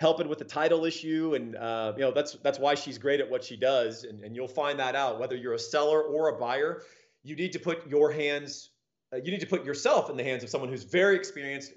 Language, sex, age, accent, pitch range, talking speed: English, male, 40-59, American, 115-150 Hz, 260 wpm